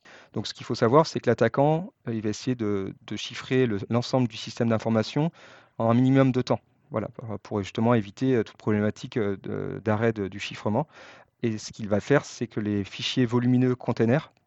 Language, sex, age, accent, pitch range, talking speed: French, male, 30-49, French, 105-130 Hz, 175 wpm